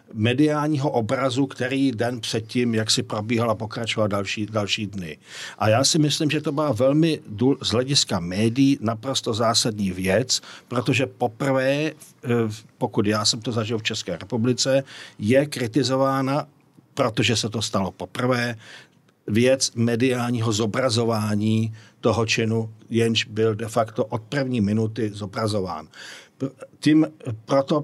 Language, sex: Czech, male